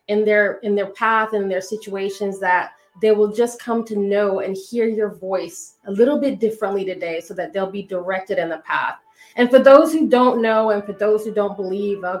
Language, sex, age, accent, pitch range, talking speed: English, female, 30-49, American, 185-215 Hz, 220 wpm